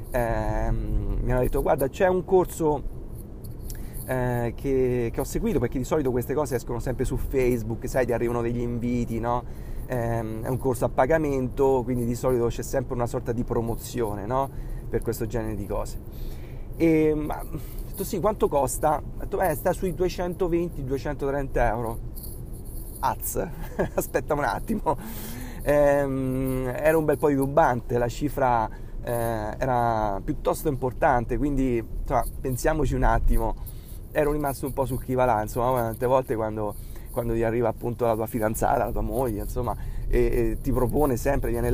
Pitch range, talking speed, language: 115-140 Hz, 160 wpm, Italian